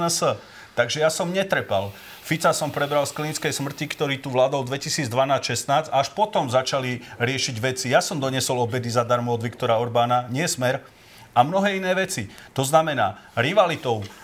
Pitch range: 120-150 Hz